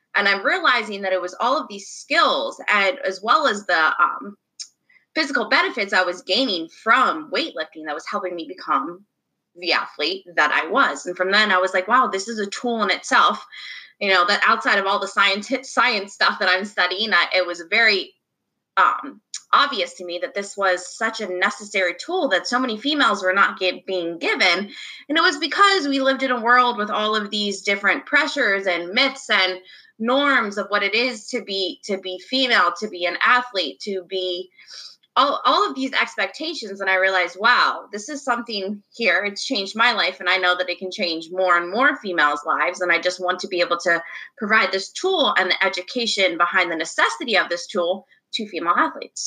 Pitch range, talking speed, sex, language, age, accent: 180-245 Hz, 205 wpm, female, English, 20-39, American